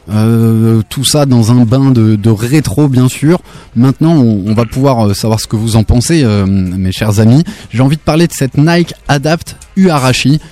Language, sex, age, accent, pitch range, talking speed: French, male, 20-39, French, 110-140 Hz, 200 wpm